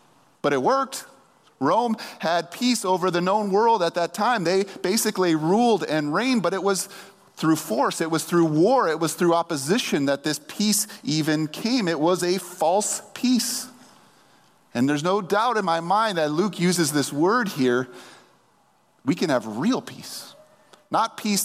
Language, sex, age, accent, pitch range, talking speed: English, male, 30-49, American, 145-205 Hz, 170 wpm